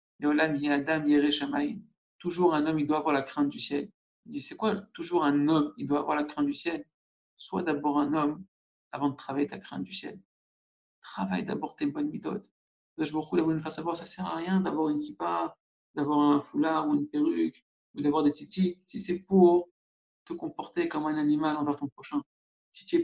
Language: French